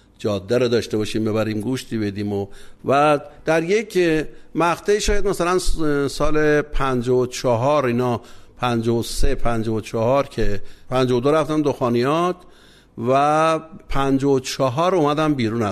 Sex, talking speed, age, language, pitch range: male, 105 wpm, 60-79, Persian, 115-150 Hz